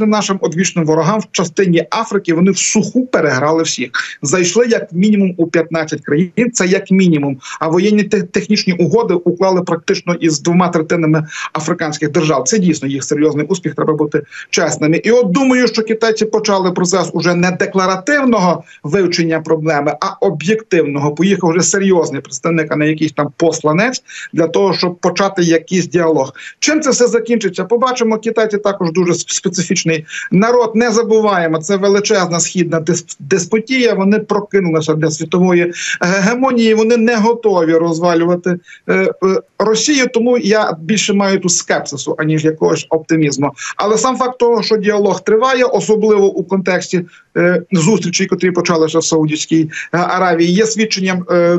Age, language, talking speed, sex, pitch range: 40-59, Ukrainian, 145 wpm, male, 165-210 Hz